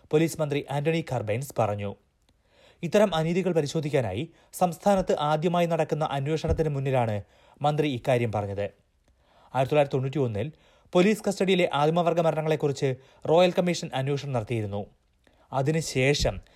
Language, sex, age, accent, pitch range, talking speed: Malayalam, male, 30-49, native, 120-170 Hz, 105 wpm